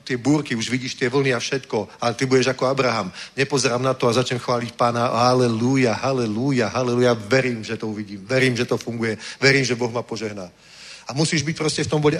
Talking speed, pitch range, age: 205 wpm, 125-150 Hz, 40-59